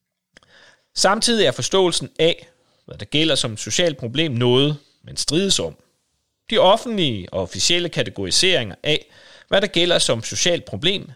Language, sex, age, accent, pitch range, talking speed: Danish, male, 30-49, native, 110-170 Hz, 140 wpm